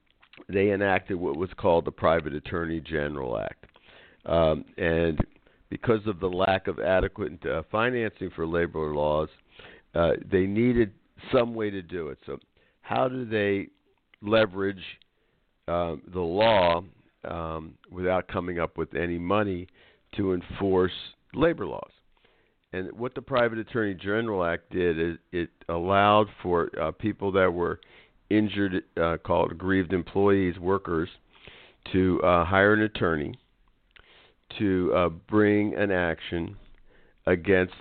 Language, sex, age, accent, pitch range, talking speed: English, male, 50-69, American, 85-100 Hz, 130 wpm